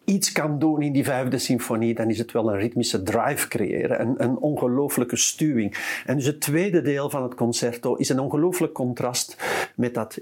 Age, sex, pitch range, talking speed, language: 50-69, male, 125-165 Hz, 195 wpm, English